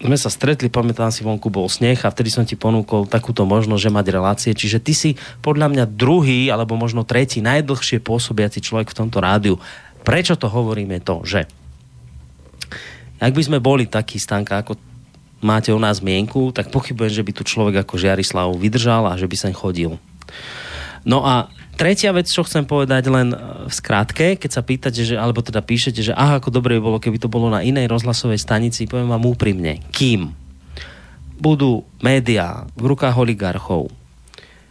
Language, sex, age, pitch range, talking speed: Slovak, male, 30-49, 95-125 Hz, 175 wpm